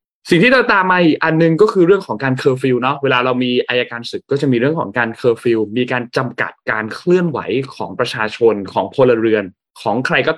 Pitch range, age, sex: 110-135 Hz, 20-39, male